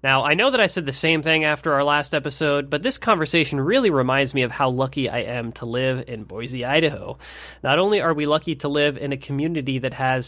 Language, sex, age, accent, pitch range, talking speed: English, male, 30-49, American, 125-150 Hz, 240 wpm